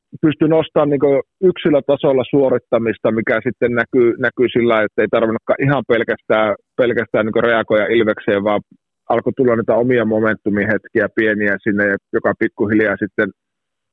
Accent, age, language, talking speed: native, 30-49, Finnish, 135 wpm